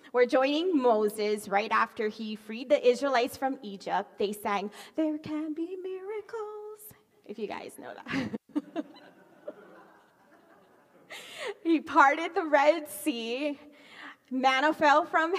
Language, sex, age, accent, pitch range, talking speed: English, female, 30-49, American, 210-300 Hz, 115 wpm